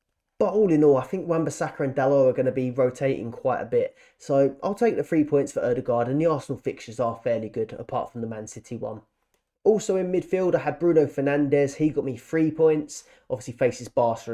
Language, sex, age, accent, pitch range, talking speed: English, male, 20-39, British, 125-155 Hz, 220 wpm